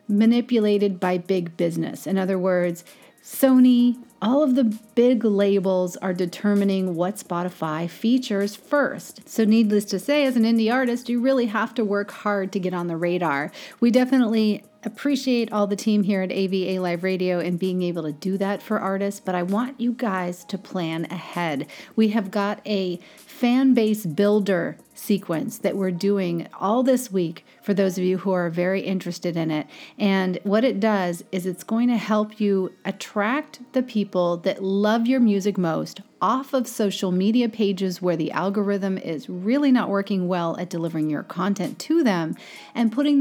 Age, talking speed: 40-59, 180 wpm